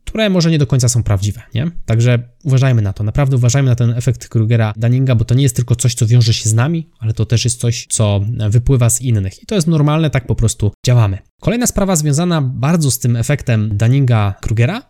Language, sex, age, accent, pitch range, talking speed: Polish, male, 20-39, native, 120-155 Hz, 225 wpm